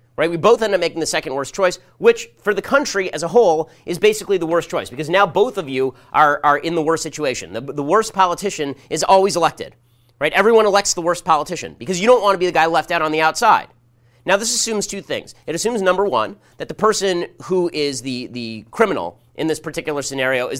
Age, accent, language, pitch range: 30-49, American, English, 130-175 Hz